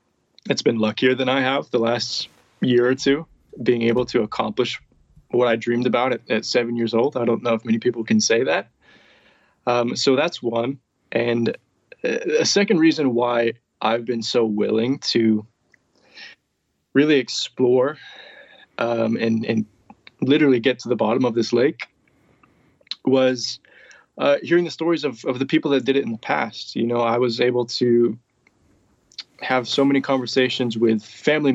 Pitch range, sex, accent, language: 115-135 Hz, male, American, English